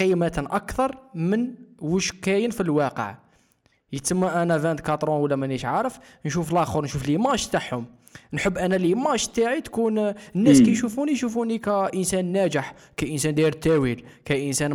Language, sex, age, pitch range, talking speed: Arabic, male, 20-39, 140-205 Hz, 140 wpm